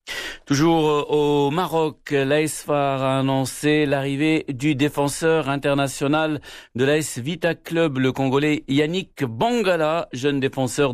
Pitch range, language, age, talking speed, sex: 125-150 Hz, Arabic, 60-79, 110 wpm, male